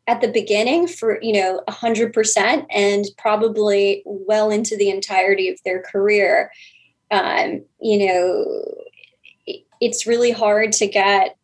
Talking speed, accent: 135 wpm, American